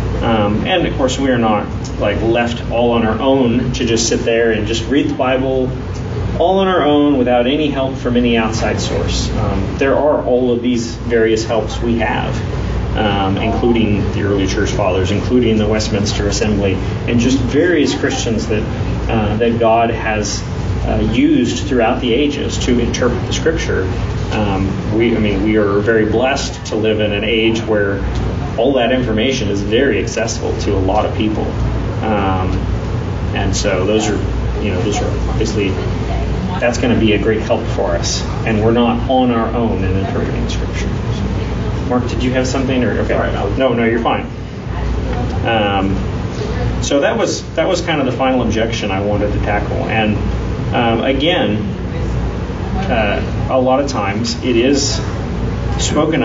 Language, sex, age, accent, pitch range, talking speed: English, male, 30-49, American, 105-120 Hz, 170 wpm